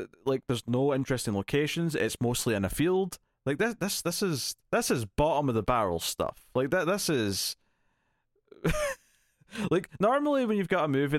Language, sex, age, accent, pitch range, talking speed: English, male, 30-49, British, 100-140 Hz, 175 wpm